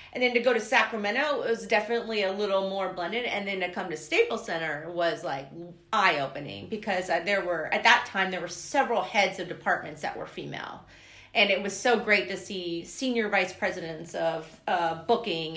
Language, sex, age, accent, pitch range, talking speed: English, female, 30-49, American, 175-240 Hz, 195 wpm